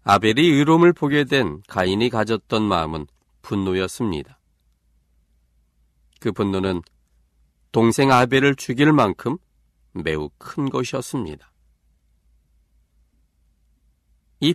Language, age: Korean, 40-59